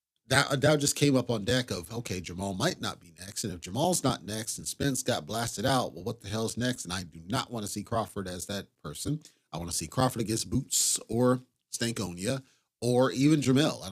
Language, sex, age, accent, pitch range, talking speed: English, male, 40-59, American, 100-130 Hz, 225 wpm